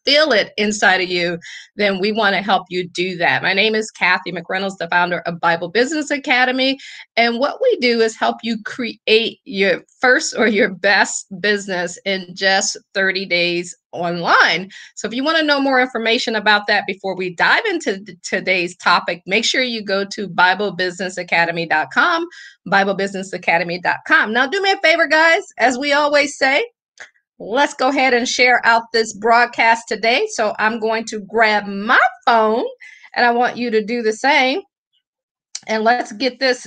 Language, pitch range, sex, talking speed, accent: English, 195-270 Hz, female, 170 wpm, American